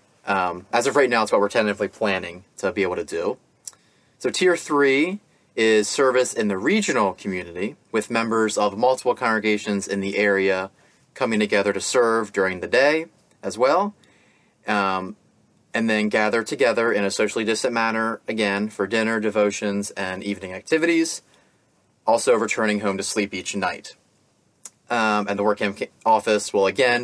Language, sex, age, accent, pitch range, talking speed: English, male, 30-49, American, 100-125 Hz, 160 wpm